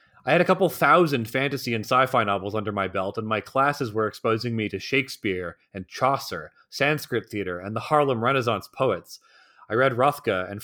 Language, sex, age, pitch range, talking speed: English, male, 30-49, 105-165 Hz, 185 wpm